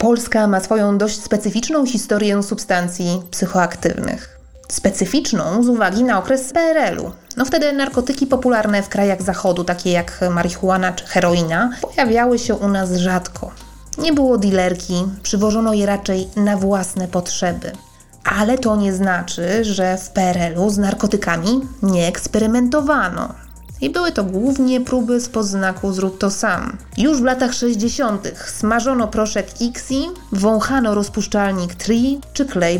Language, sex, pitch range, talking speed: Polish, female, 190-245 Hz, 130 wpm